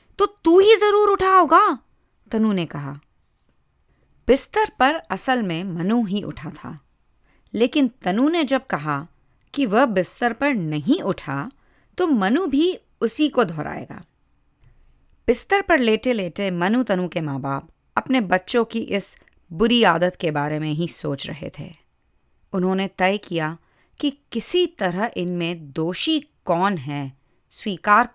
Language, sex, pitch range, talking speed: Hindi, female, 150-235 Hz, 145 wpm